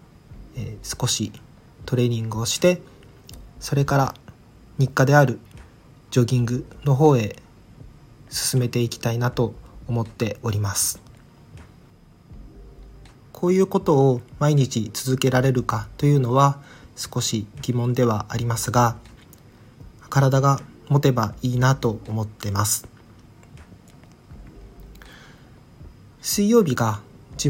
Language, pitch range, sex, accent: Japanese, 110-135 Hz, male, native